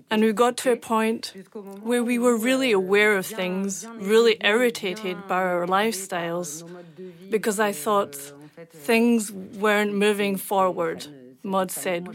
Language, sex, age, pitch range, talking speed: French, female, 40-59, 190-230 Hz, 135 wpm